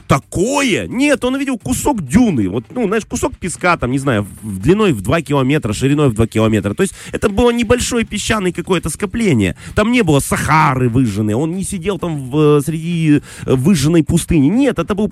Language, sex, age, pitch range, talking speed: Russian, male, 30-49, 115-175 Hz, 185 wpm